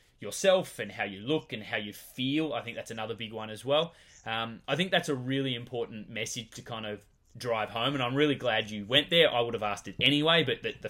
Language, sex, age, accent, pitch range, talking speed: English, male, 20-39, Australian, 110-140 Hz, 255 wpm